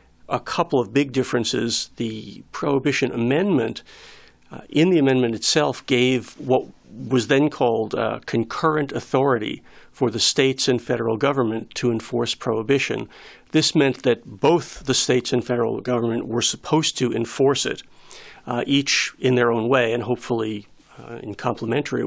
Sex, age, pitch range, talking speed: male, 50-69, 115-140 Hz, 150 wpm